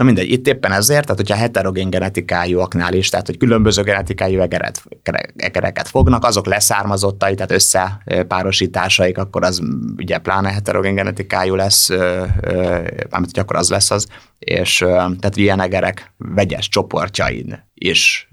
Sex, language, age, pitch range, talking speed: male, Hungarian, 30-49, 90-105 Hz, 130 wpm